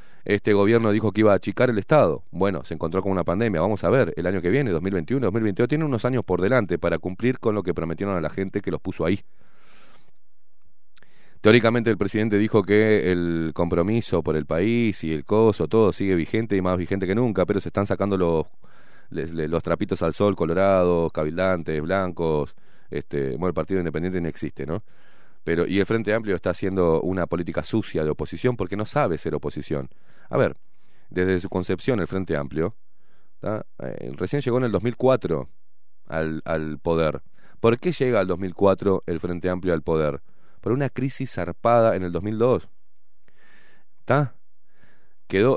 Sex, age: male, 30-49